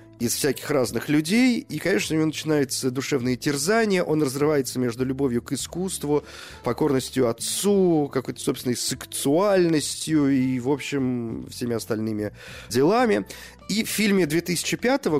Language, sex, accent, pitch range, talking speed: Russian, male, native, 105-150 Hz, 125 wpm